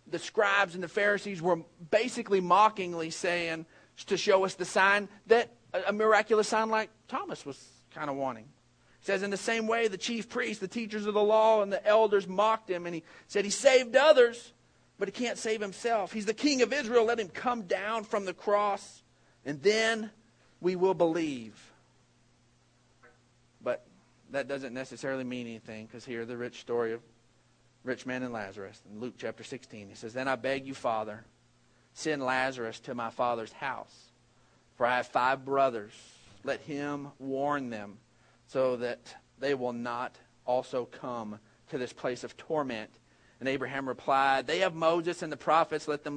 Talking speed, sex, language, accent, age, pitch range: 175 wpm, male, English, American, 40-59, 125-200 Hz